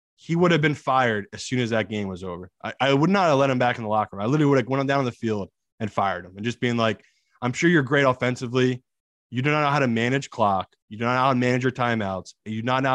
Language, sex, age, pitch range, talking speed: English, male, 20-39, 105-130 Hz, 305 wpm